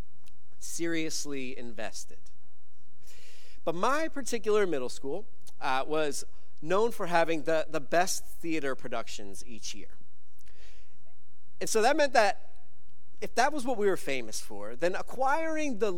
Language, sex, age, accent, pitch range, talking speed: English, male, 40-59, American, 125-180 Hz, 130 wpm